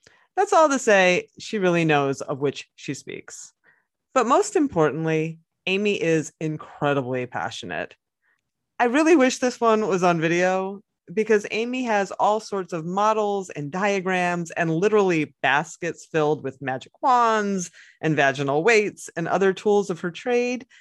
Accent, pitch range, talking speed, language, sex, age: American, 165-245 Hz, 145 wpm, English, female, 30-49